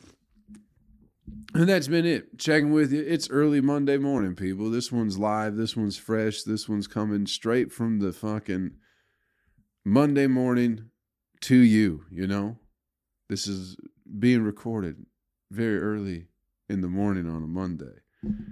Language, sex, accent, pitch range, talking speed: English, male, American, 85-110 Hz, 140 wpm